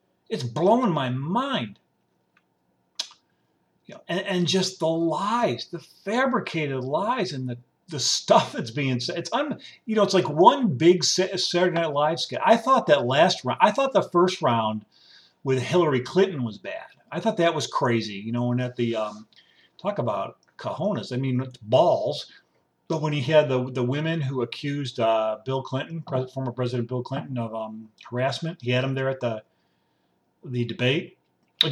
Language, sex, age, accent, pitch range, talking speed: English, male, 50-69, American, 125-170 Hz, 180 wpm